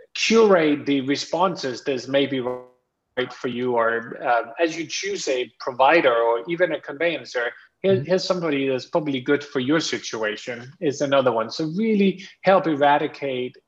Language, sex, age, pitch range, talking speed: English, male, 30-49, 120-160 Hz, 155 wpm